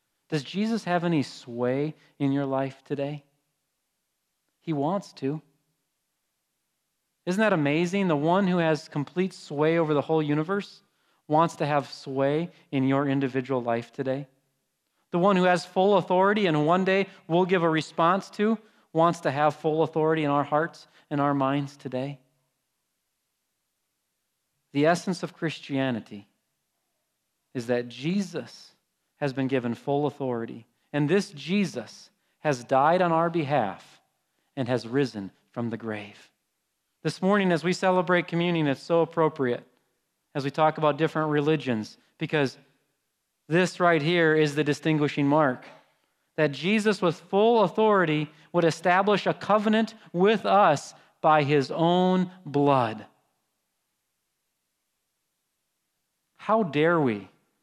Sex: male